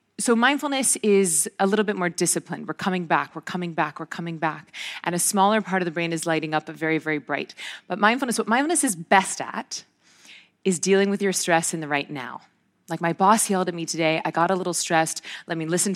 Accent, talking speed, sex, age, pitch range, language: American, 235 wpm, female, 30-49, 160-190 Hz, English